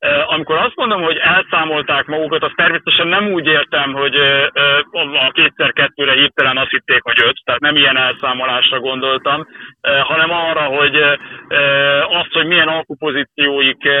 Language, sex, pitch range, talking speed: Hungarian, male, 140-160 Hz, 135 wpm